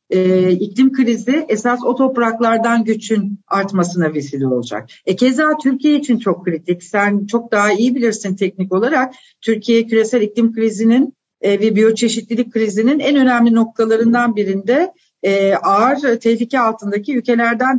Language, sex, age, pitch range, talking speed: Turkish, female, 60-79, 205-265 Hz, 135 wpm